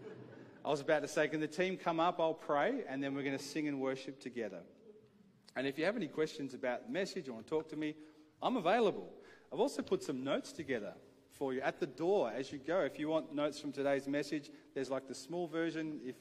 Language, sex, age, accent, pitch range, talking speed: English, male, 40-59, Australian, 125-160 Hz, 240 wpm